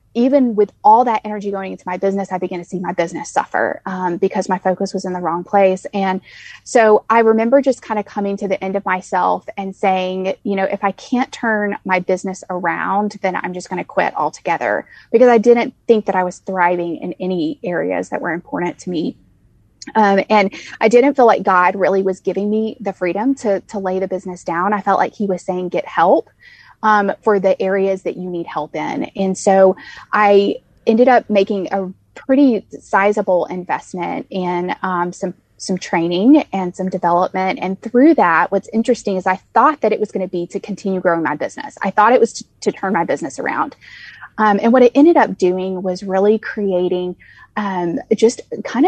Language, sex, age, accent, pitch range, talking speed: English, female, 20-39, American, 185-215 Hz, 205 wpm